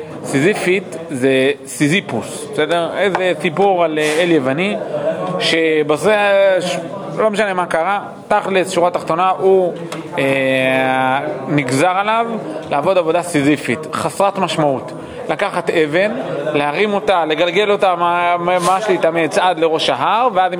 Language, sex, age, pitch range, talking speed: Hebrew, male, 30-49, 150-185 Hz, 120 wpm